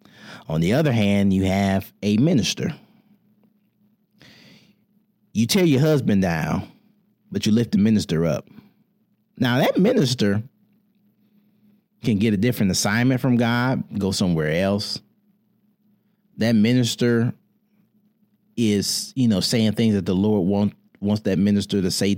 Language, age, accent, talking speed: English, 30-49, American, 125 wpm